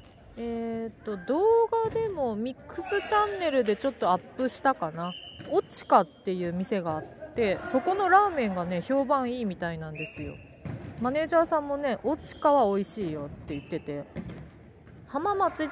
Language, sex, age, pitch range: Japanese, female, 30-49, 180-285 Hz